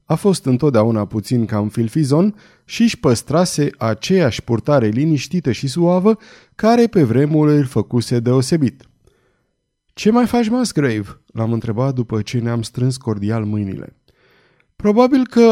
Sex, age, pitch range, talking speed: male, 20-39, 115-170 Hz, 135 wpm